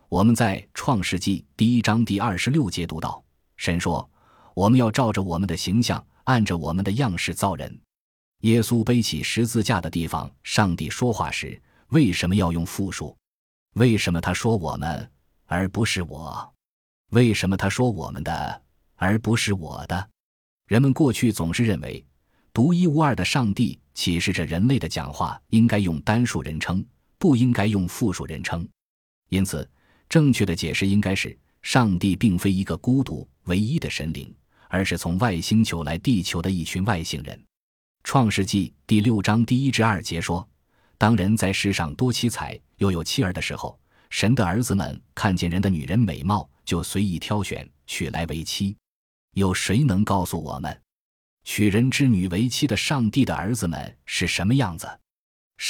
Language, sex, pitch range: Chinese, male, 85-115 Hz